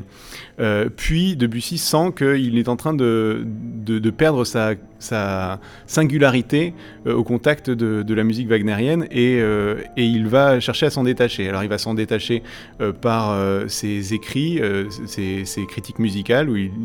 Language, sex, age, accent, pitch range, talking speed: French, male, 30-49, French, 105-130 Hz, 175 wpm